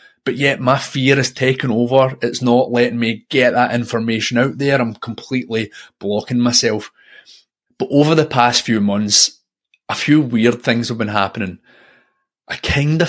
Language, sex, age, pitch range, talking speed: English, male, 30-49, 110-130 Hz, 160 wpm